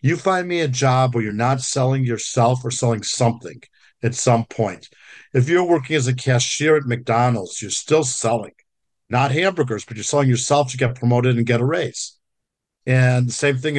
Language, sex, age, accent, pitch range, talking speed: English, male, 50-69, American, 120-145 Hz, 190 wpm